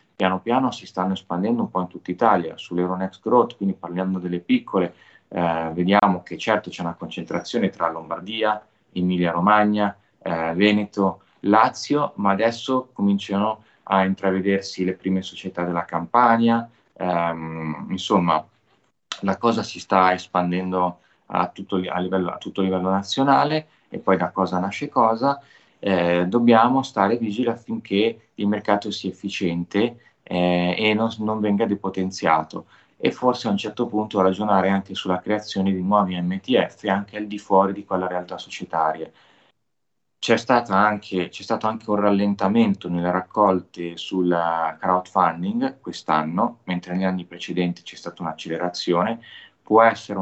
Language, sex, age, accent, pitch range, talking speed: Italian, male, 30-49, native, 90-105 Hz, 140 wpm